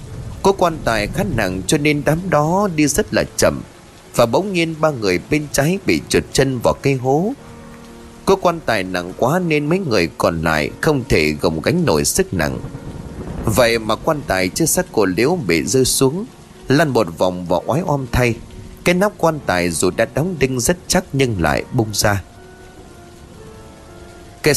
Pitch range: 95-155 Hz